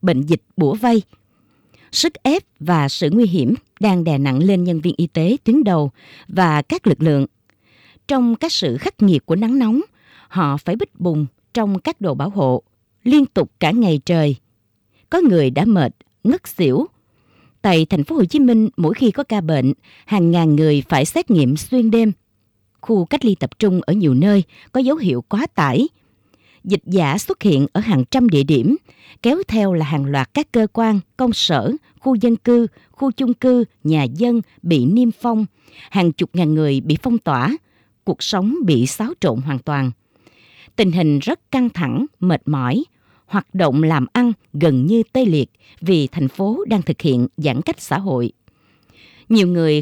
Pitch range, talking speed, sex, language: 145-230 Hz, 185 wpm, female, Vietnamese